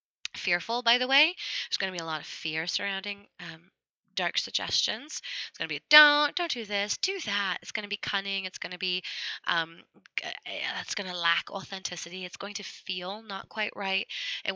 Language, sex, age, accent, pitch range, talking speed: English, female, 20-39, American, 180-230 Hz, 200 wpm